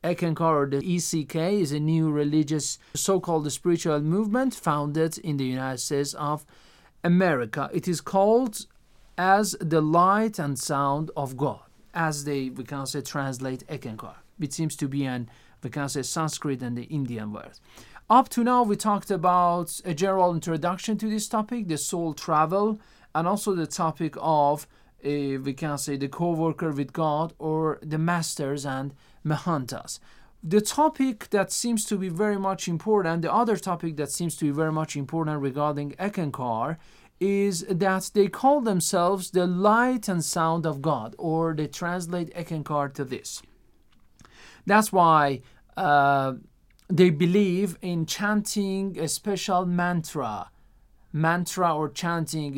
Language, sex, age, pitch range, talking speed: Persian, male, 40-59, 145-195 Hz, 150 wpm